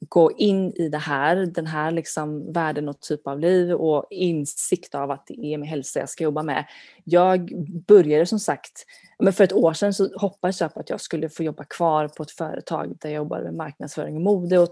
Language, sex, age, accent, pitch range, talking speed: Swedish, female, 30-49, native, 155-185 Hz, 220 wpm